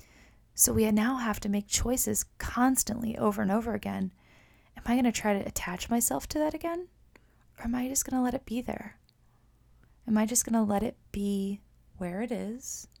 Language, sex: English, female